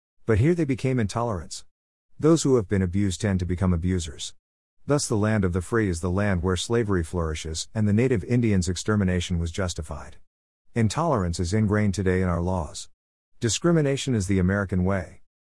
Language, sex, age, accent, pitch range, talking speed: English, male, 50-69, American, 85-115 Hz, 175 wpm